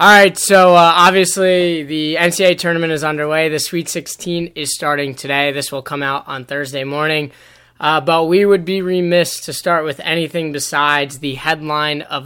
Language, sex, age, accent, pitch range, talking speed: English, male, 20-39, American, 140-165 Hz, 175 wpm